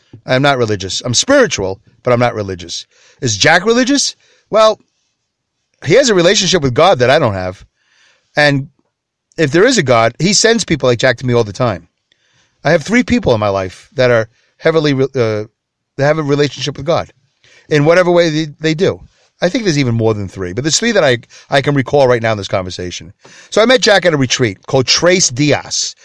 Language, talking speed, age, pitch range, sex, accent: English, 210 wpm, 40-59, 125-180 Hz, male, American